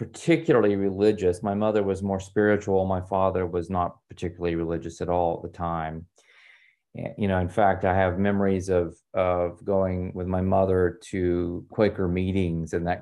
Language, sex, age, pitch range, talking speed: English, male, 30-49, 85-100 Hz, 165 wpm